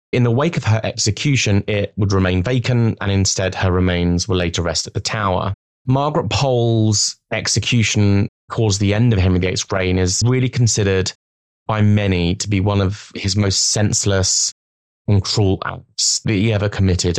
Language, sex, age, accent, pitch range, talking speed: English, male, 30-49, British, 90-110 Hz, 175 wpm